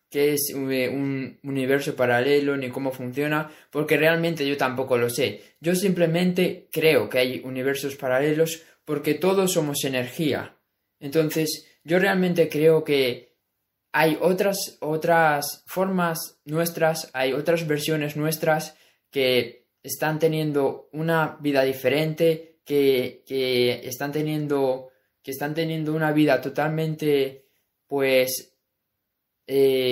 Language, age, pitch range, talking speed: Spanish, 20-39, 130-160 Hz, 110 wpm